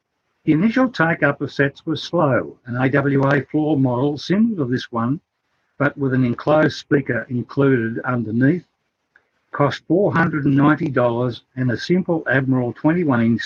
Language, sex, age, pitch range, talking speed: English, male, 60-79, 125-155 Hz, 130 wpm